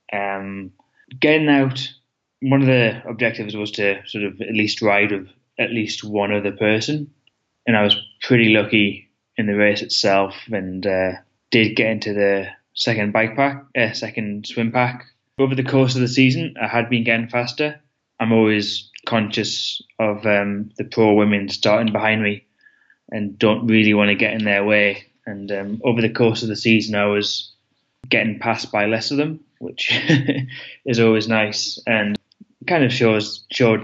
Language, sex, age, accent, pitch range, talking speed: English, male, 20-39, British, 100-120 Hz, 175 wpm